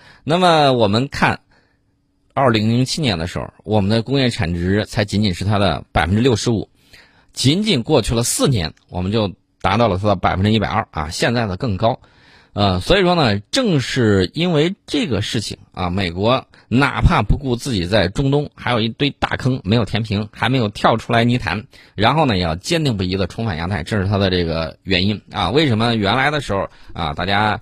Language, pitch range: Chinese, 95-125 Hz